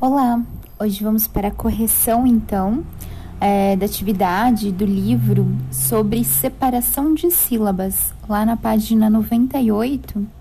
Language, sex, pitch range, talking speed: Portuguese, female, 200-245 Hz, 115 wpm